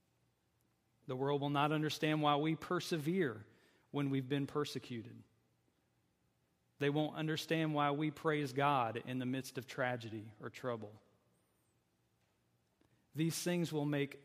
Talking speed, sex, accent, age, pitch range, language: 125 wpm, male, American, 40-59, 120-155 Hz, English